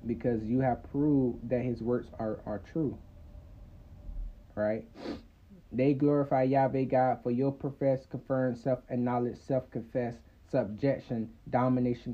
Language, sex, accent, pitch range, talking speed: English, male, American, 115-135 Hz, 115 wpm